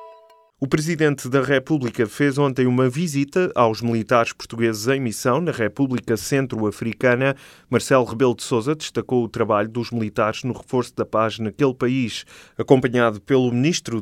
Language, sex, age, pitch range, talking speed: Portuguese, male, 20-39, 110-140 Hz, 145 wpm